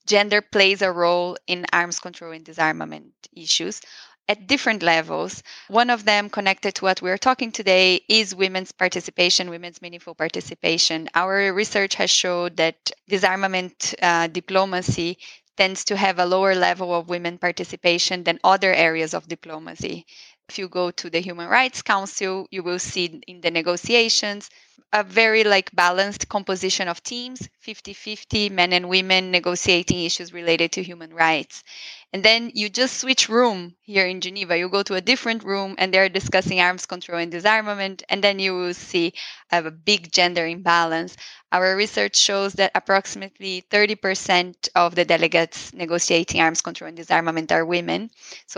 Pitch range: 175-205 Hz